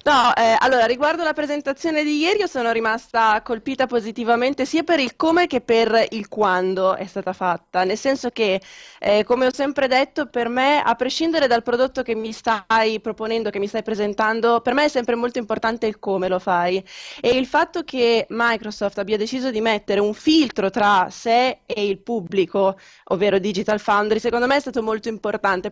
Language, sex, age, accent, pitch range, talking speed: Italian, female, 20-39, native, 205-255 Hz, 190 wpm